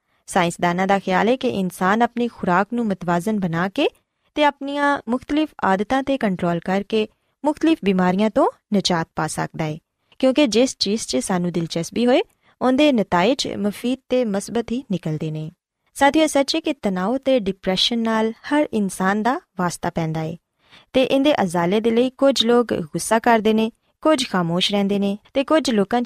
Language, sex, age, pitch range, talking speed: Punjabi, female, 20-39, 185-265 Hz, 165 wpm